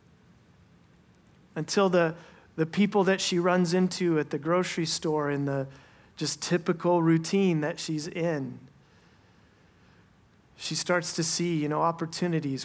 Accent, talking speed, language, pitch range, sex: American, 130 wpm, English, 145-175 Hz, male